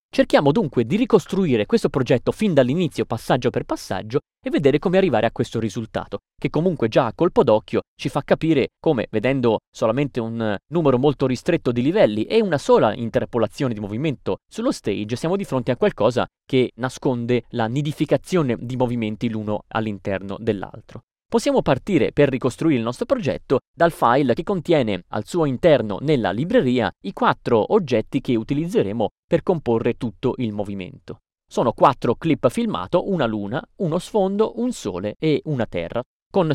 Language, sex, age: Italian, male, 30-49